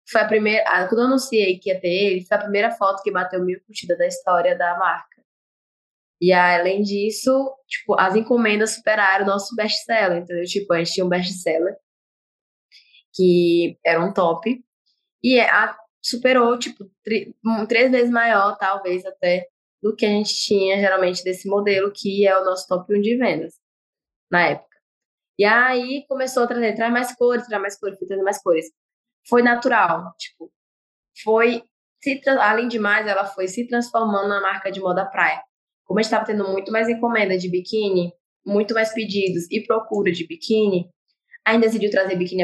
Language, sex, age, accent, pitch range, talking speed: Portuguese, female, 10-29, Brazilian, 185-235 Hz, 165 wpm